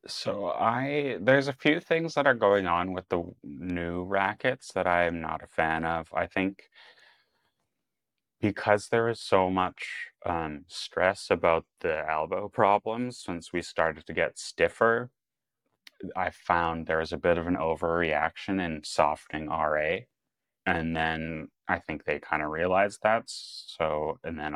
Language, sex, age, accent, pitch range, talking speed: English, male, 30-49, American, 80-100 Hz, 155 wpm